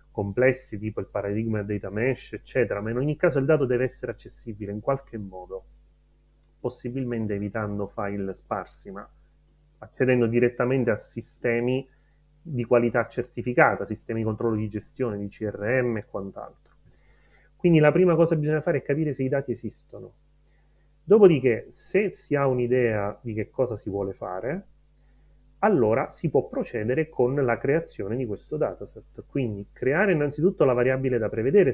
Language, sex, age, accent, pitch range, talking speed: Italian, male, 30-49, native, 105-140 Hz, 155 wpm